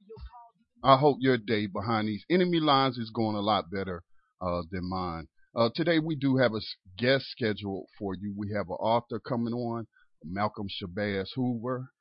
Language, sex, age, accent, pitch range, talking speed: English, male, 40-59, American, 100-130 Hz, 175 wpm